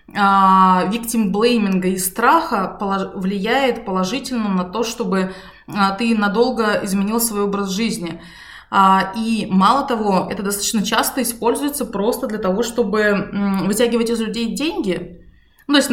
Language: Russian